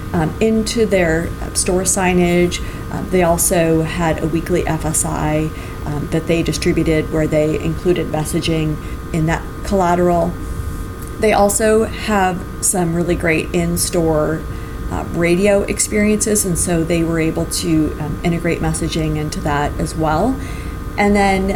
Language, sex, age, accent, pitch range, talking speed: English, female, 40-59, American, 155-185 Hz, 130 wpm